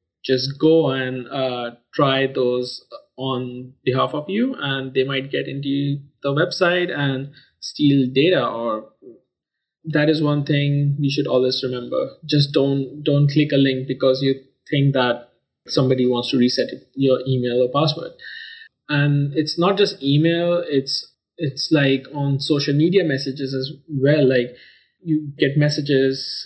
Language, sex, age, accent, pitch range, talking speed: English, male, 20-39, Indian, 130-155 Hz, 145 wpm